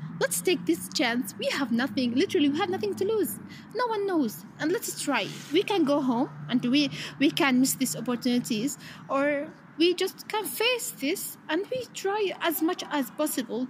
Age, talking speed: 20-39, 190 wpm